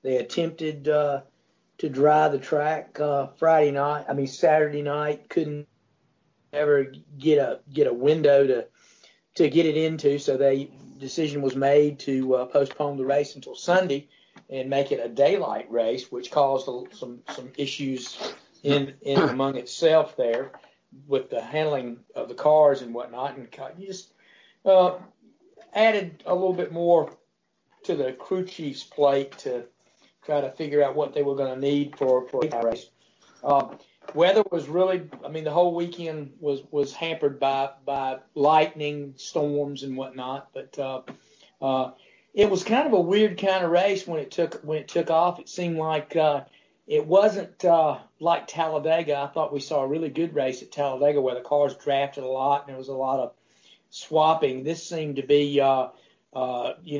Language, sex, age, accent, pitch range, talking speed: English, male, 50-69, American, 135-165 Hz, 175 wpm